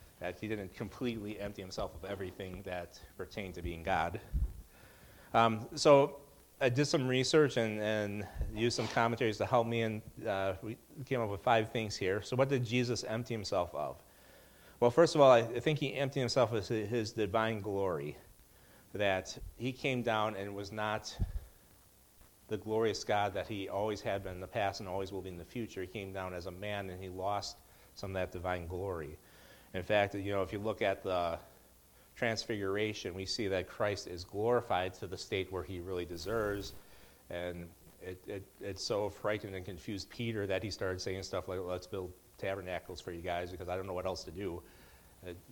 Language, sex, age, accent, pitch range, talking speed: English, male, 40-59, American, 95-115 Hz, 195 wpm